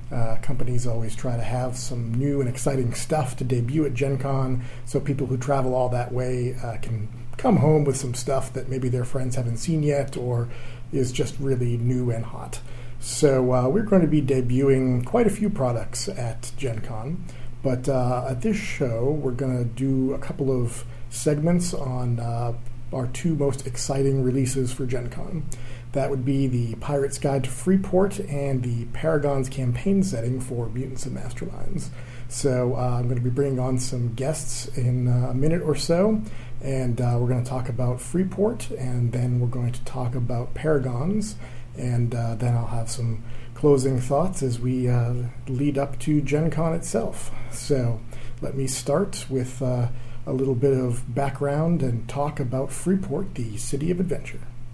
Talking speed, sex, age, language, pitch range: 180 wpm, male, 40-59, English, 120-140 Hz